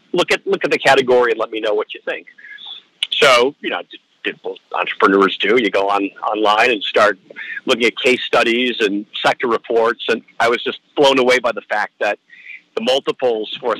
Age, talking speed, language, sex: 50-69, 210 wpm, English, male